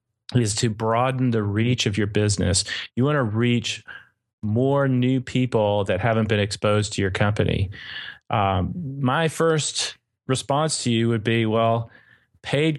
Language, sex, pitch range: English, male, 105-125 Hz